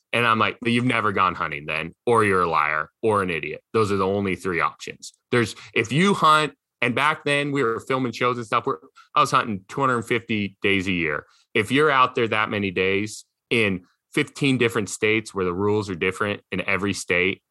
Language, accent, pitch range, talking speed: English, American, 90-130 Hz, 210 wpm